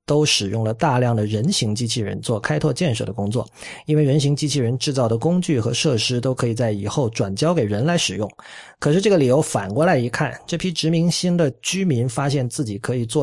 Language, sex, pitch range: Chinese, male, 110-155 Hz